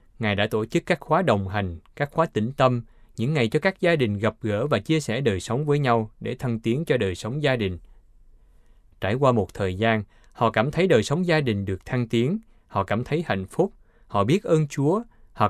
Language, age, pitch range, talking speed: Vietnamese, 20-39, 100-140 Hz, 230 wpm